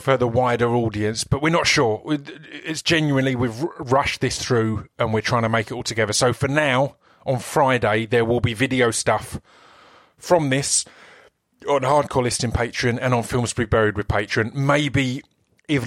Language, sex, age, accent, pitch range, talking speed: English, male, 30-49, British, 110-130 Hz, 180 wpm